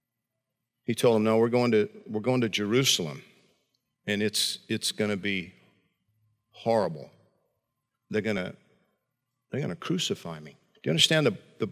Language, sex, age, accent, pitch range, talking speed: English, male, 50-69, American, 110-145 Hz, 145 wpm